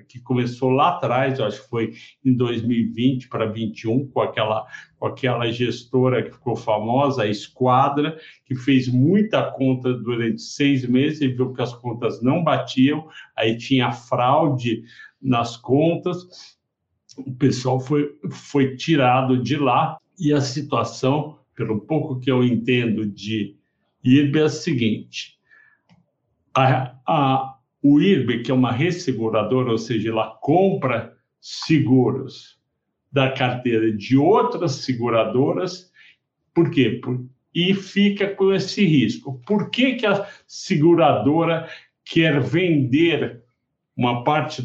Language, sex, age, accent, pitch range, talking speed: Portuguese, male, 60-79, Brazilian, 120-150 Hz, 130 wpm